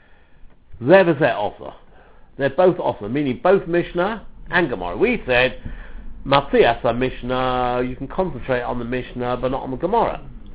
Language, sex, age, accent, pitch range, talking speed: English, male, 60-79, British, 130-195 Hz, 150 wpm